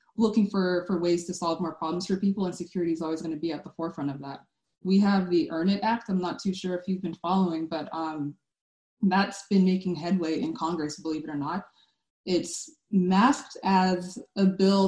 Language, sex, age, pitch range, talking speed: English, female, 20-39, 165-190 Hz, 215 wpm